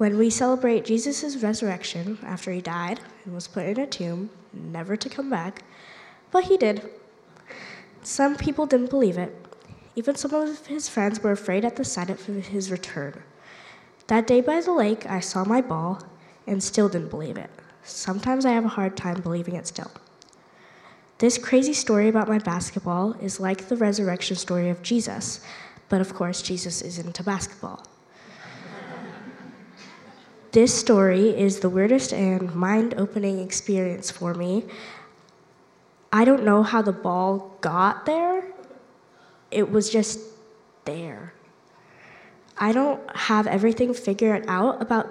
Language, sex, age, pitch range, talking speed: English, female, 10-29, 185-230 Hz, 150 wpm